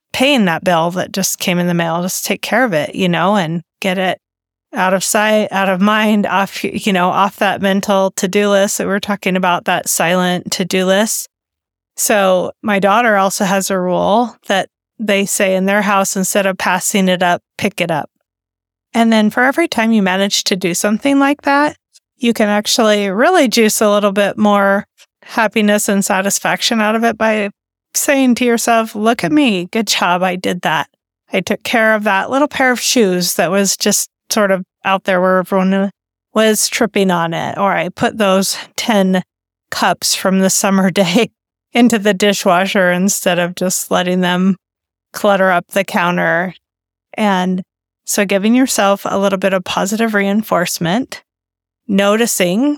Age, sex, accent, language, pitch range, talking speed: 30-49, female, American, English, 185-220 Hz, 175 wpm